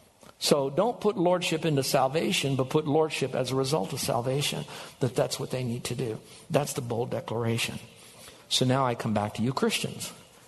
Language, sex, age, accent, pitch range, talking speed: English, male, 60-79, American, 125-160 Hz, 190 wpm